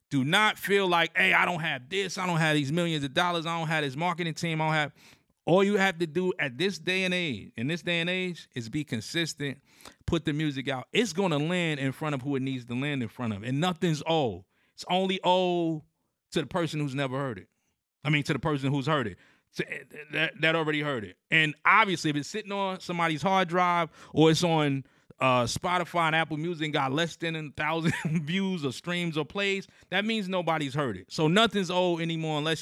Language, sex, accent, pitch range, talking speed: English, male, American, 145-180 Hz, 230 wpm